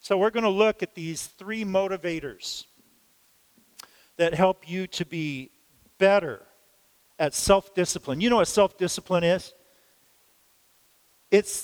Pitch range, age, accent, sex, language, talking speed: 175-215 Hz, 50-69, American, male, English, 120 wpm